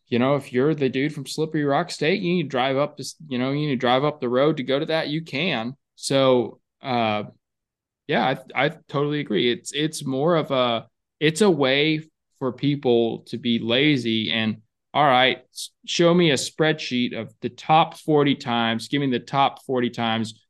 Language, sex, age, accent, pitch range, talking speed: English, male, 20-39, American, 115-140 Hz, 200 wpm